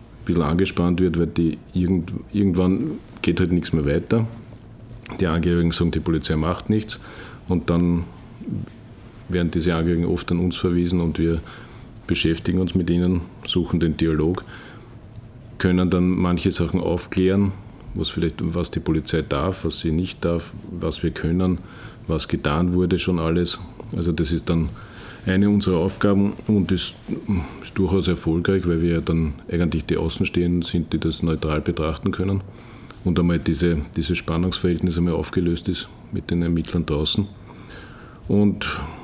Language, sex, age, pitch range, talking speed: German, male, 50-69, 85-100 Hz, 150 wpm